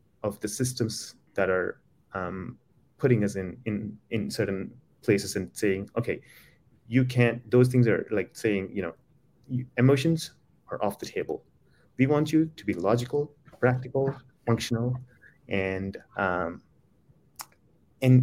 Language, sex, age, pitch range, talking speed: English, male, 30-49, 115-145 Hz, 135 wpm